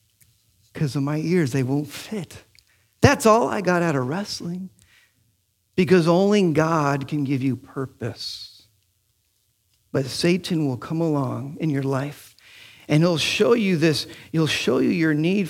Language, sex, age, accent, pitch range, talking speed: English, male, 50-69, American, 110-165 Hz, 150 wpm